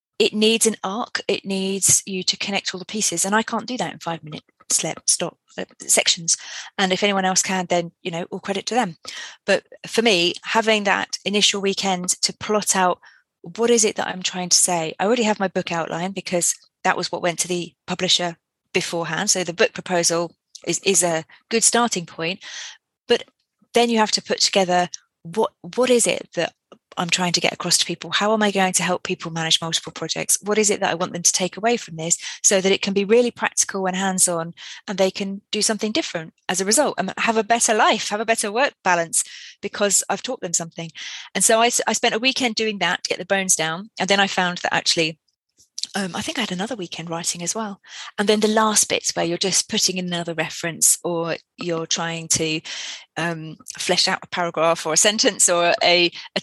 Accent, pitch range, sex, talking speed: British, 170-210 Hz, female, 220 wpm